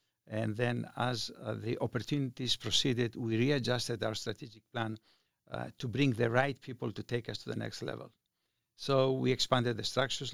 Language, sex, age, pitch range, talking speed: English, male, 60-79, 115-130 Hz, 175 wpm